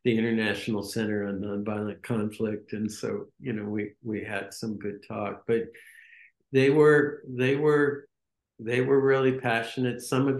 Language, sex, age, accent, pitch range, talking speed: English, male, 60-79, American, 115-140 Hz, 155 wpm